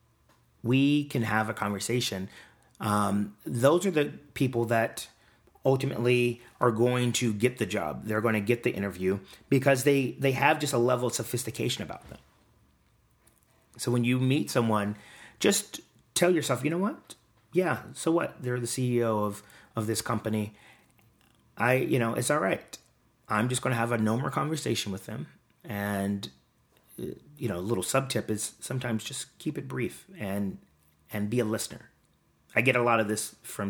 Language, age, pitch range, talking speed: English, 30-49, 105-125 Hz, 175 wpm